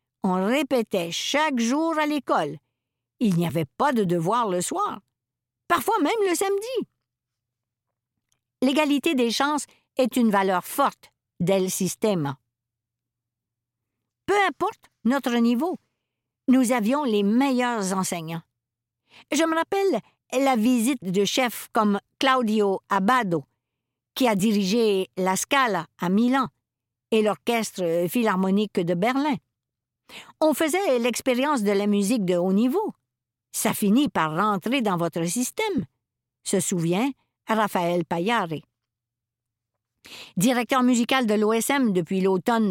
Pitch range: 170-260 Hz